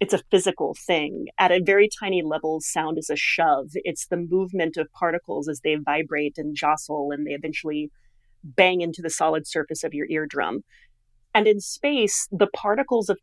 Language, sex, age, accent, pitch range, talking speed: English, female, 30-49, American, 160-215 Hz, 180 wpm